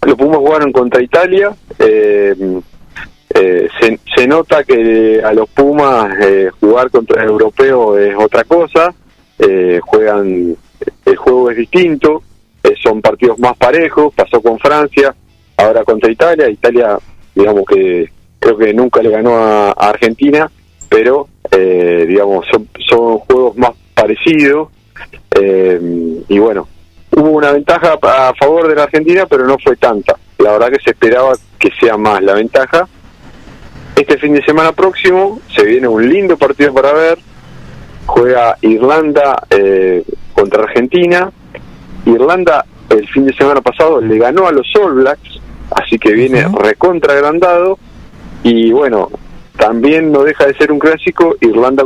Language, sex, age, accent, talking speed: English, male, 40-59, Argentinian, 145 wpm